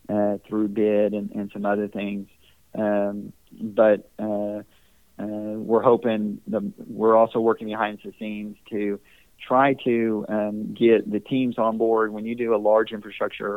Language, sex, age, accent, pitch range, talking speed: English, male, 40-59, American, 105-110 Hz, 155 wpm